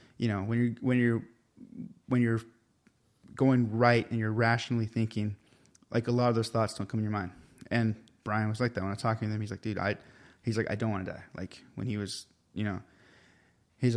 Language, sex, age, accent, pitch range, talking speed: English, male, 20-39, American, 105-120 Hz, 230 wpm